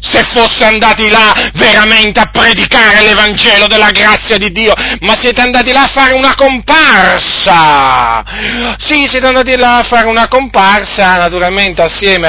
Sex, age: male, 40-59